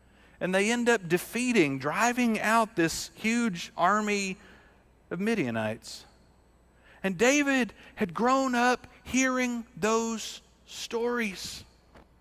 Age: 50-69